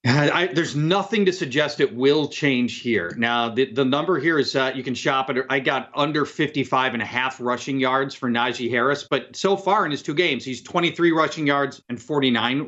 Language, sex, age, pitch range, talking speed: English, male, 40-59, 140-195 Hz, 215 wpm